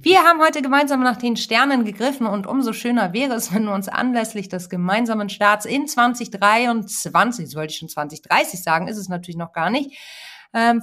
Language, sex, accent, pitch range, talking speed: German, female, German, 195-245 Hz, 190 wpm